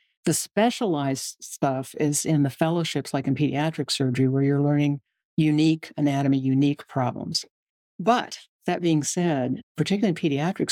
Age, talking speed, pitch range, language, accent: 60-79, 140 wpm, 140-165 Hz, English, American